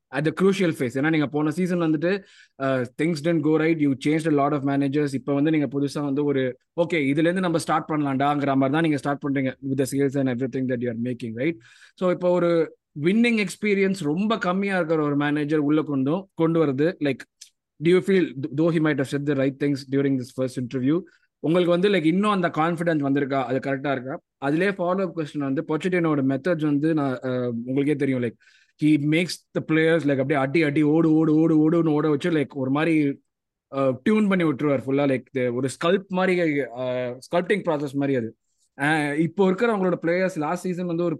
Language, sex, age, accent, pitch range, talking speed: Tamil, male, 20-39, native, 140-170 Hz, 170 wpm